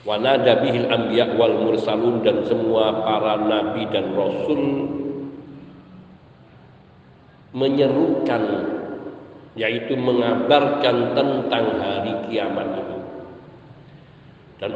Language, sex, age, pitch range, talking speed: Indonesian, male, 50-69, 140-165 Hz, 65 wpm